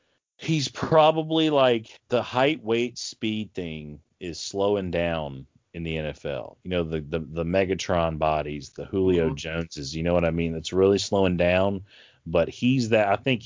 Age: 30-49